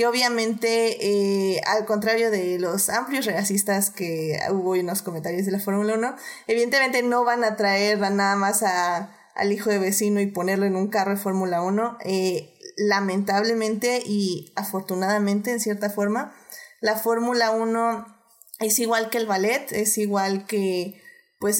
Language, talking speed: Spanish, 150 wpm